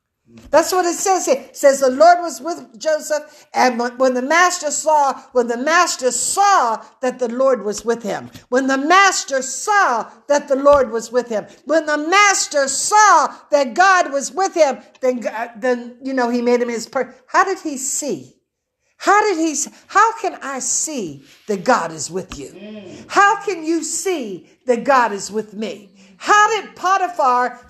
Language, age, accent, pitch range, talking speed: English, 60-79, American, 190-290 Hz, 180 wpm